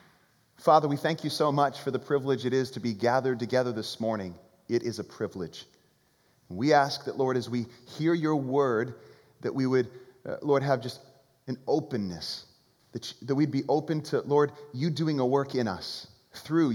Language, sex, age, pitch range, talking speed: English, male, 30-49, 110-140 Hz, 190 wpm